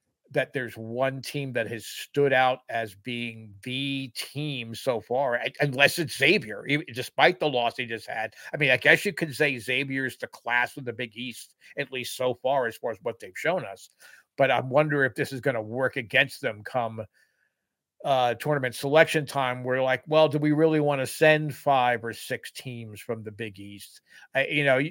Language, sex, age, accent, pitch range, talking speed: English, male, 50-69, American, 120-145 Hz, 200 wpm